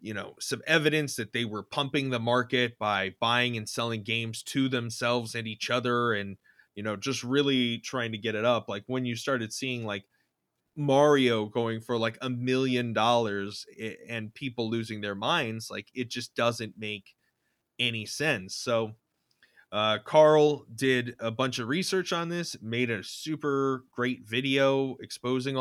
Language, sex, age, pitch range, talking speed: English, male, 20-39, 110-130 Hz, 165 wpm